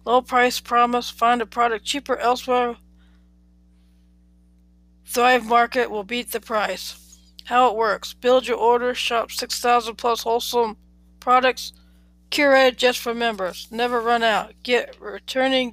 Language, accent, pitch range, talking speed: English, American, 185-250 Hz, 130 wpm